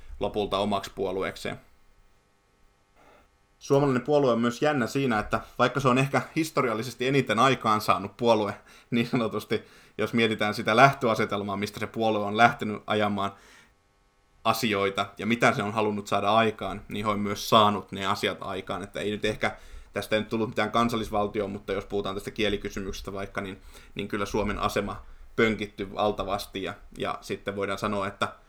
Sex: male